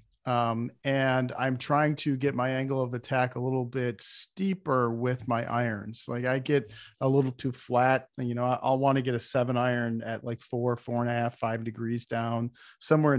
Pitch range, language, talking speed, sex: 120-140 Hz, English, 200 wpm, male